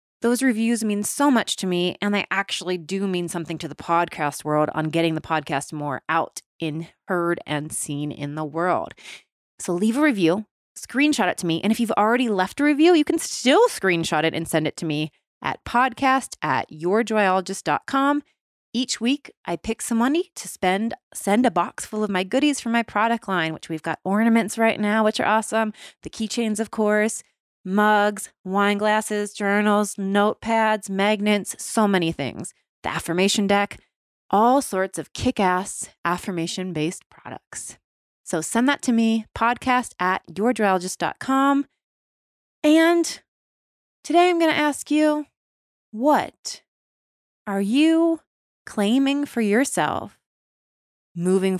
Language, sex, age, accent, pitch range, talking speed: English, female, 20-39, American, 175-235 Hz, 150 wpm